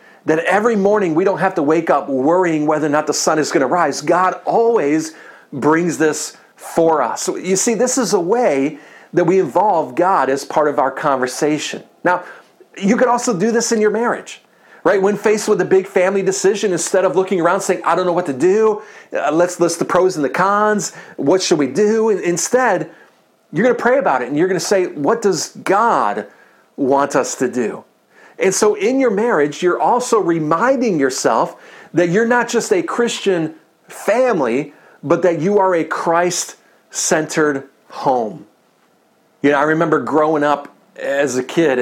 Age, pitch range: 40-59, 150-210 Hz